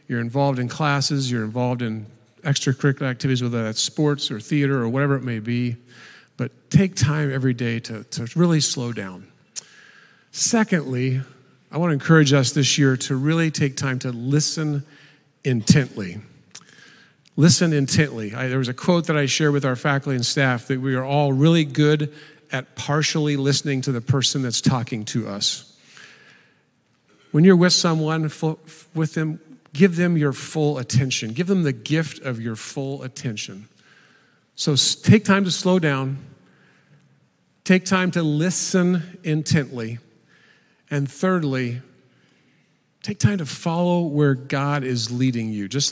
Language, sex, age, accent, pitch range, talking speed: English, male, 50-69, American, 125-155 Hz, 150 wpm